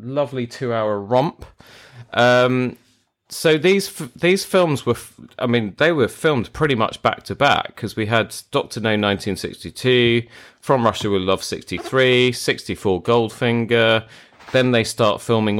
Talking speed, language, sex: 145 wpm, English, male